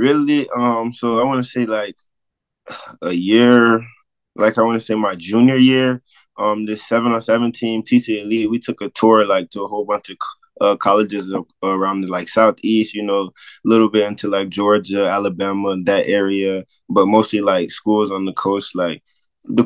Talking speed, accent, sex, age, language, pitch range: 185 wpm, American, male, 20-39, English, 100-120 Hz